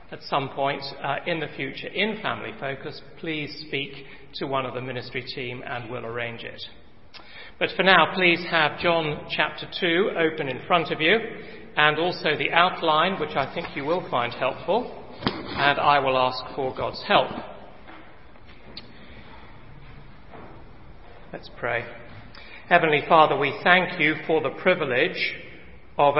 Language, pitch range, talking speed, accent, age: English, 130-165 Hz, 145 wpm, British, 40-59